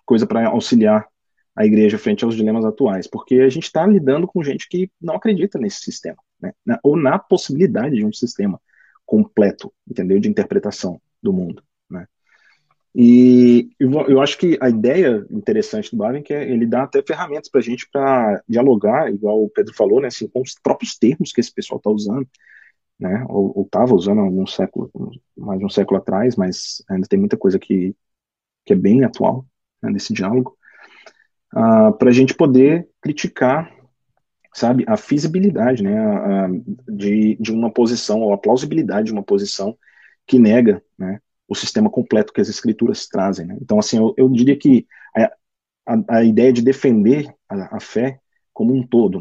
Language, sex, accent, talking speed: Portuguese, male, Brazilian, 180 wpm